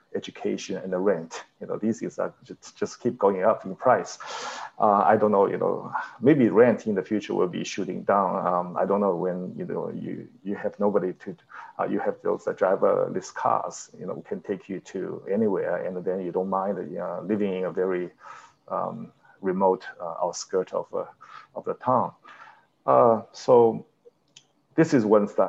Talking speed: 190 wpm